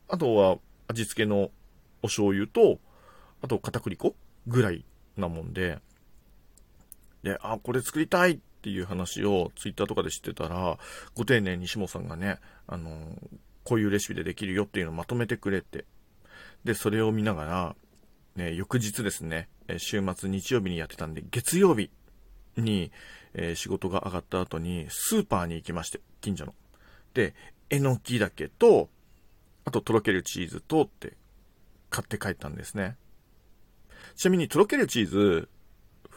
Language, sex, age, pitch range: Japanese, male, 40-59, 95-140 Hz